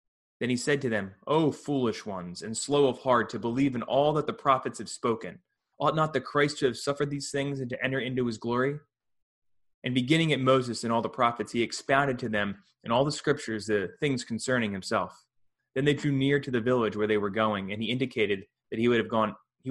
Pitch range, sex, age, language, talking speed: 105-130 Hz, male, 20-39, English, 220 wpm